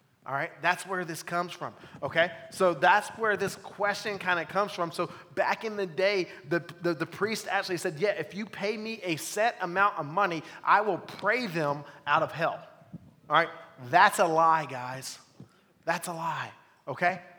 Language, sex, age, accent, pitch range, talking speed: English, male, 30-49, American, 160-195 Hz, 190 wpm